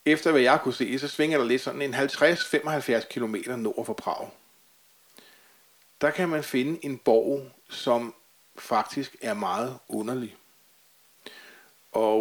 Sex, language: male, Danish